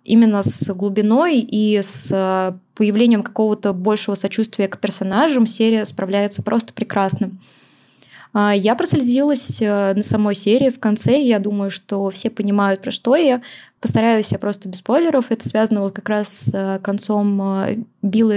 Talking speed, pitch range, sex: 135 wpm, 205-235 Hz, female